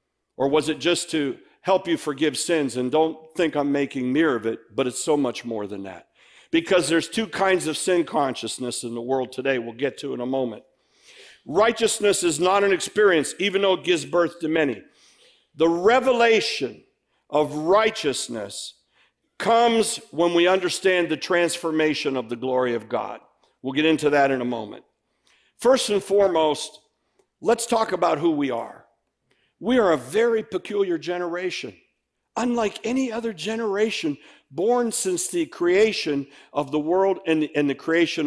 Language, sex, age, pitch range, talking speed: English, male, 50-69, 155-225 Hz, 165 wpm